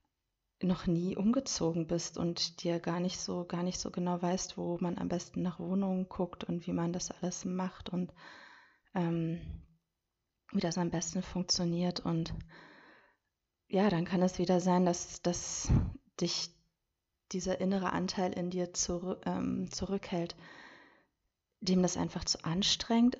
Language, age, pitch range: German, 30-49, 165-185 Hz